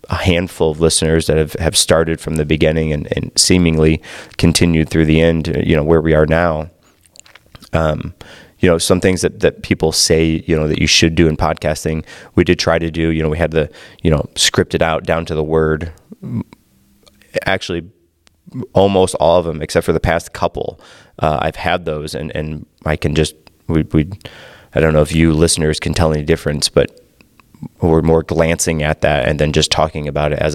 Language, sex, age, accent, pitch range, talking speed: English, male, 30-49, American, 75-85 Hz, 200 wpm